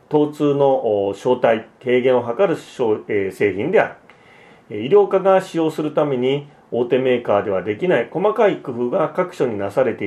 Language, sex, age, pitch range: Japanese, male, 40-59, 130-185 Hz